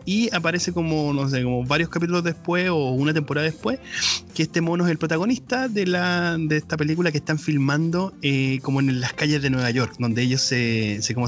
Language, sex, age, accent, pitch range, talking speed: Spanish, male, 20-39, Argentinian, 120-145 Hz, 215 wpm